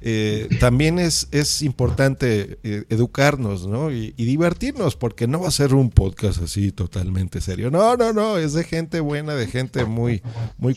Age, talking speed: 50-69, 175 wpm